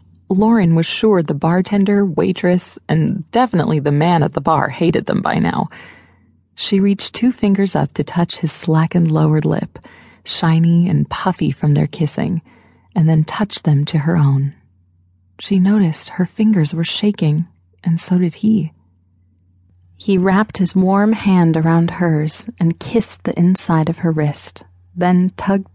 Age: 30-49